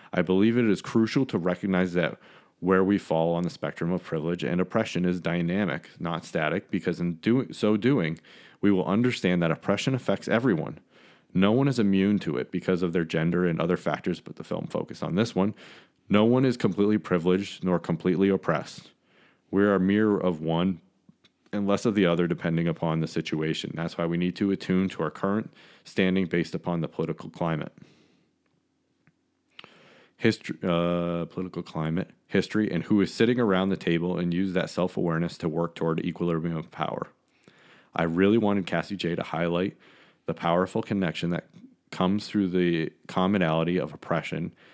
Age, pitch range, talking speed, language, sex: 30-49, 85-100 Hz, 175 wpm, English, male